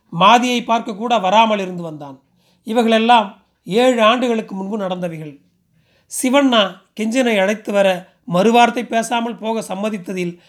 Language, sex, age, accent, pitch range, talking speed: Tamil, male, 40-59, native, 185-230 Hz, 105 wpm